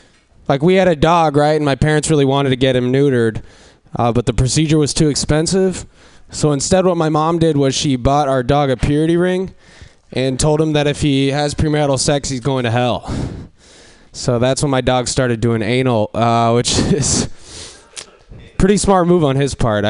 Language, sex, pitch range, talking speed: English, male, 125-175 Hz, 200 wpm